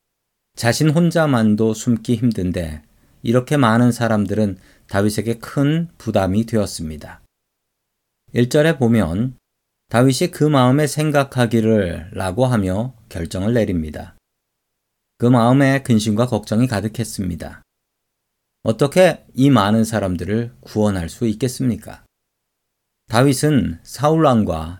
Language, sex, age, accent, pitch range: Korean, male, 40-59, native, 100-130 Hz